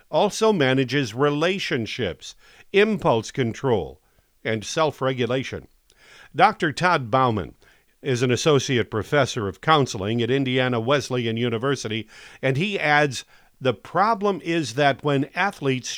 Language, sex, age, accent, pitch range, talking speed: English, male, 50-69, American, 120-160 Hz, 110 wpm